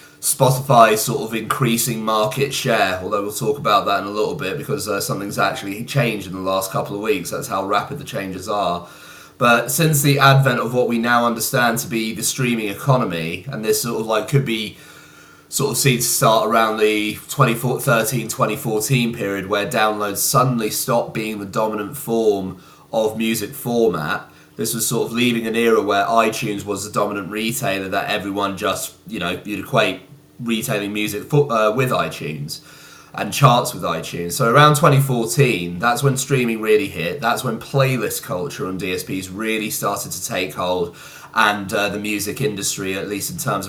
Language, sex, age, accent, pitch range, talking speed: English, male, 30-49, British, 100-130 Hz, 180 wpm